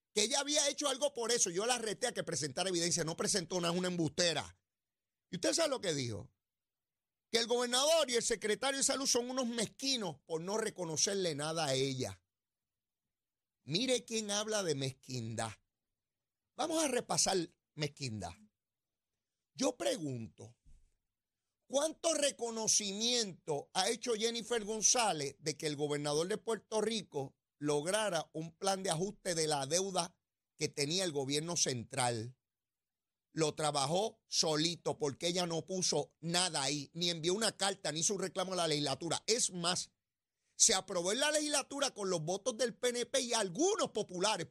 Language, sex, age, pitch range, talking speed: Spanish, male, 40-59, 150-240 Hz, 155 wpm